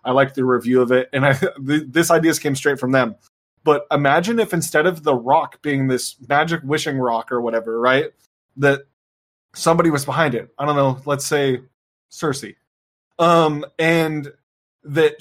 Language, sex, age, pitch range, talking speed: English, male, 20-39, 130-150 Hz, 175 wpm